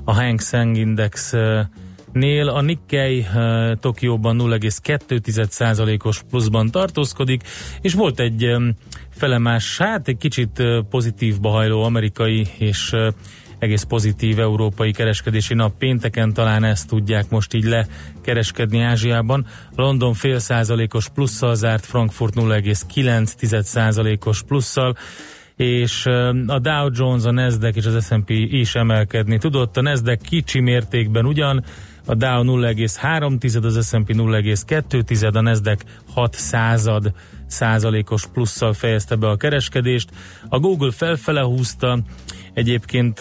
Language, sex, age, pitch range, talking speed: Hungarian, male, 30-49, 110-125 Hz, 110 wpm